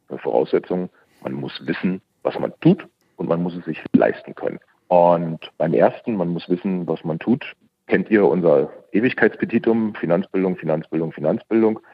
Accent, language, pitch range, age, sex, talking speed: German, German, 85-110 Hz, 40-59, male, 150 wpm